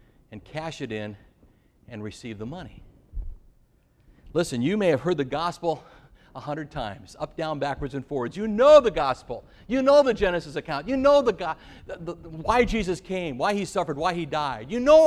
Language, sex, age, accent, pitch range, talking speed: English, male, 60-79, American, 145-225 Hz, 200 wpm